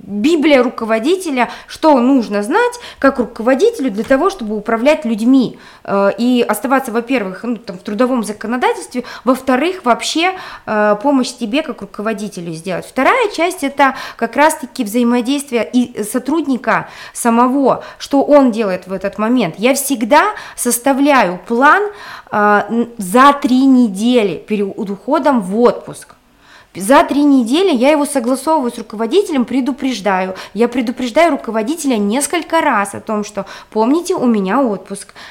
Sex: female